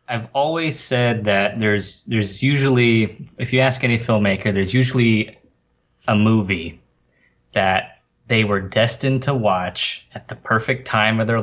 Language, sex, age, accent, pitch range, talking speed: English, male, 20-39, American, 95-115 Hz, 145 wpm